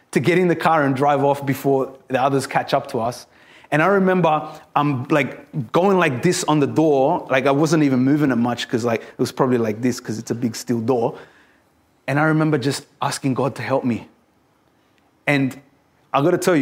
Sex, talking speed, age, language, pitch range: male, 220 wpm, 20-39, English, 125-150 Hz